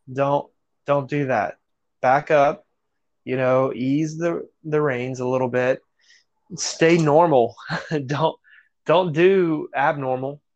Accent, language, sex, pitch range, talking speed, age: American, English, male, 125-145 Hz, 120 wpm, 20-39